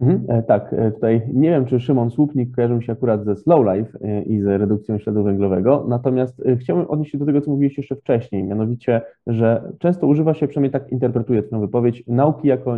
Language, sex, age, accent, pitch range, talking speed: English, male, 20-39, Polish, 115-145 Hz, 195 wpm